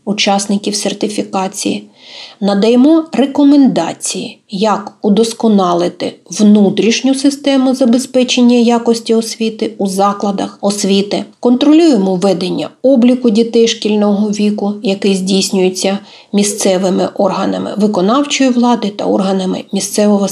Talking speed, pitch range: 85 wpm, 195-240 Hz